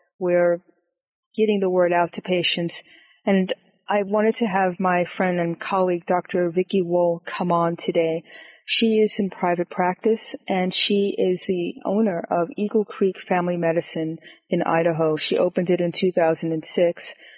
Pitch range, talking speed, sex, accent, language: 175-210 Hz, 150 wpm, female, American, English